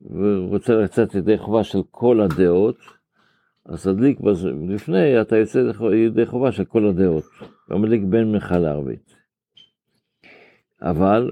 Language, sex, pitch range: Hebrew, male, 95-115 Hz